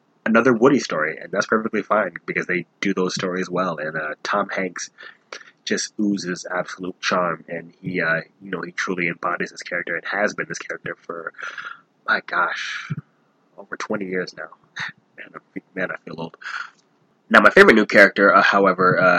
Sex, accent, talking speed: male, American, 175 wpm